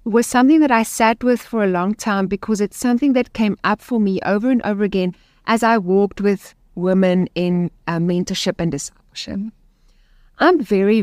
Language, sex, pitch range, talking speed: English, female, 185-230 Hz, 185 wpm